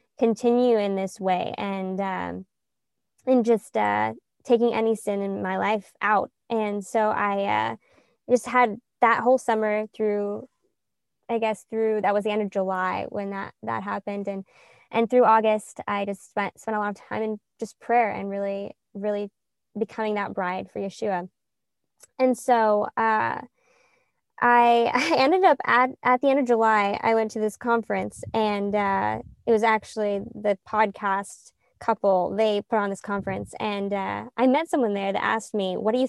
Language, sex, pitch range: English, female, 200-250 Hz